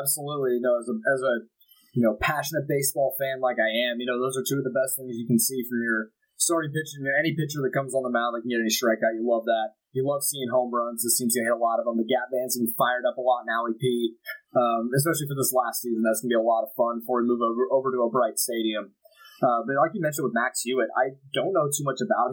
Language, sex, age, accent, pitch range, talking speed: English, male, 20-39, American, 115-145 Hz, 290 wpm